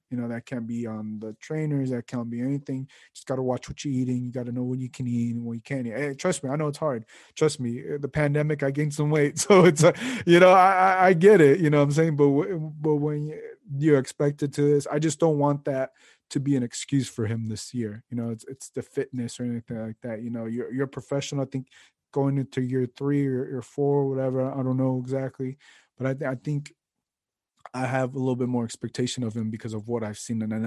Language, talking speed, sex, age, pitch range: English, 260 wpm, male, 20-39, 120-145 Hz